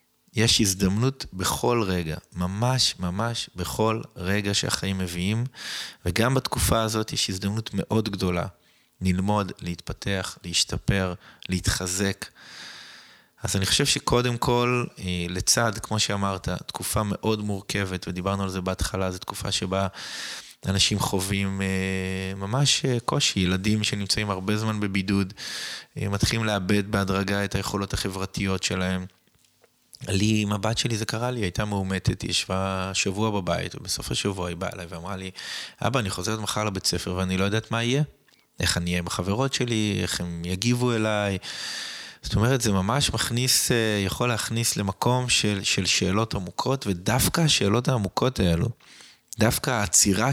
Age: 20-39